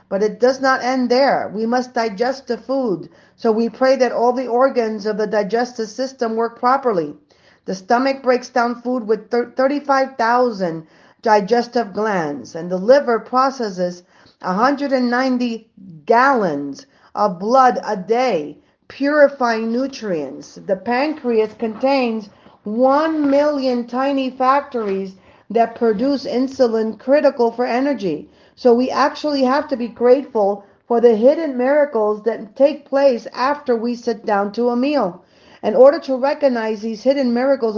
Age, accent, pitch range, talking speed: 40-59, American, 220-265 Hz, 145 wpm